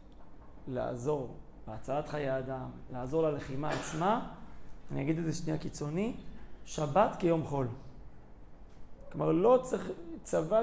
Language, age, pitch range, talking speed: Hebrew, 30-49, 145-180 Hz, 115 wpm